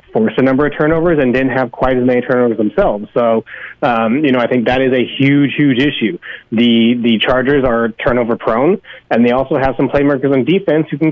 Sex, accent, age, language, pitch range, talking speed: male, American, 20-39, English, 115-145 Hz, 215 wpm